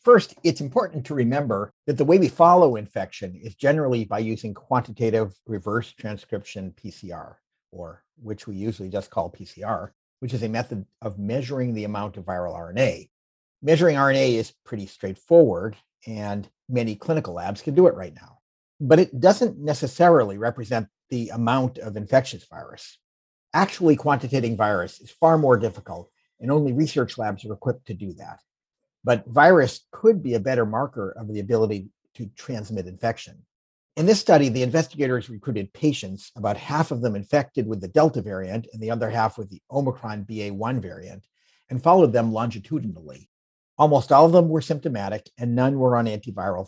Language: English